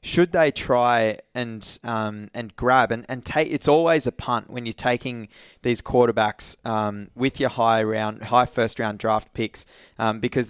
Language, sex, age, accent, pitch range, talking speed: English, male, 20-39, Australian, 110-125 Hz, 170 wpm